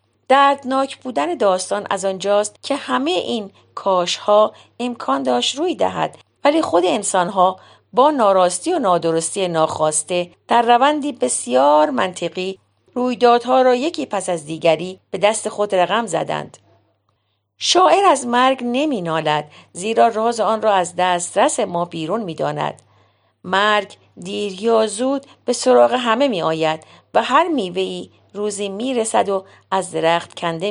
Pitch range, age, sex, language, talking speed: 170-240 Hz, 50-69, female, Persian, 130 wpm